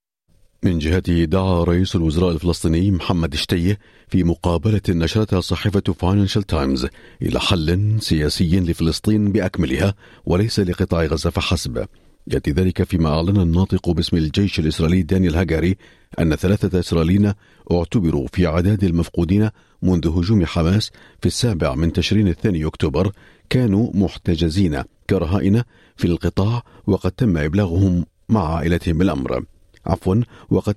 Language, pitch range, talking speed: Arabic, 85-100 Hz, 120 wpm